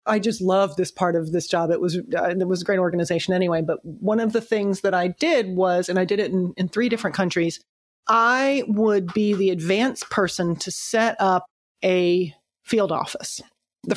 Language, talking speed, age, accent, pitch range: English, 200 wpm, 30-49, American, 190-235 Hz